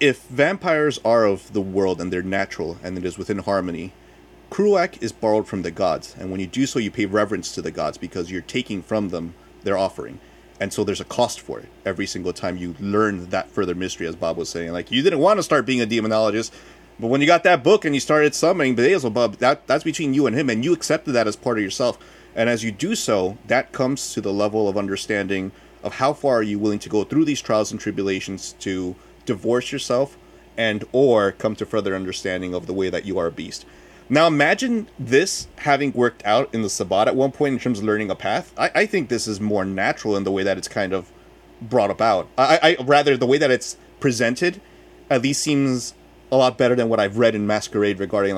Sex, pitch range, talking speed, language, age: male, 95-130 Hz, 235 wpm, English, 30-49